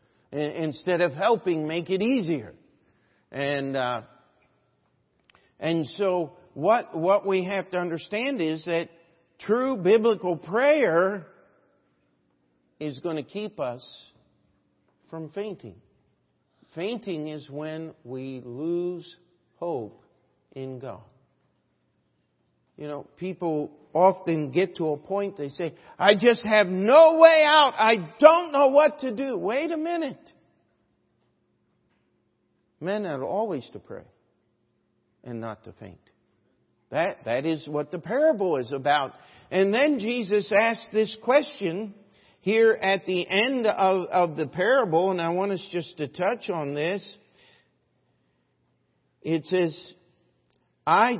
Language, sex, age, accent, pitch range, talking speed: English, male, 50-69, American, 150-210 Hz, 120 wpm